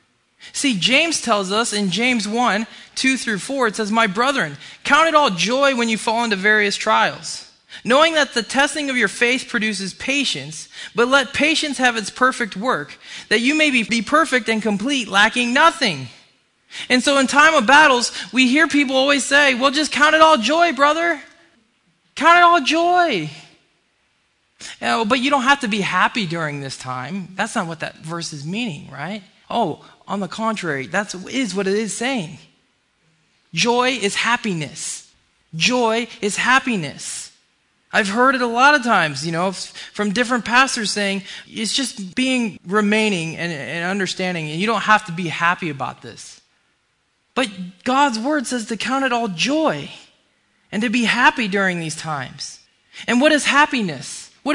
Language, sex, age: English, male, 20-39